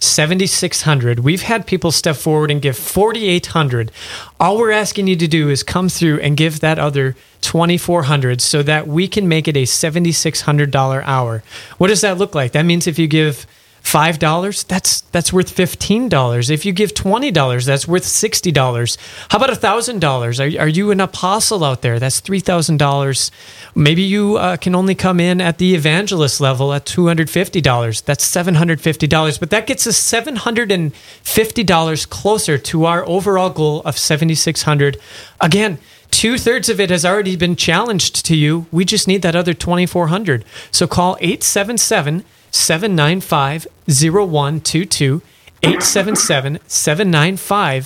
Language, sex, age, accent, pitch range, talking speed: English, male, 30-49, American, 145-190 Hz, 195 wpm